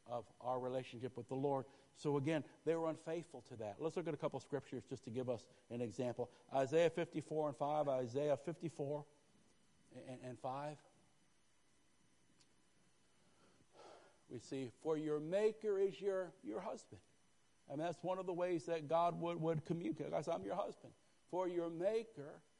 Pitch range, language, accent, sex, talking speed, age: 130-165 Hz, English, American, male, 155 wpm, 60-79